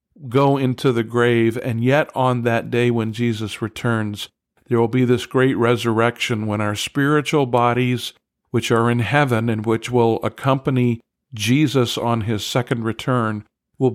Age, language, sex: 50-69, English, male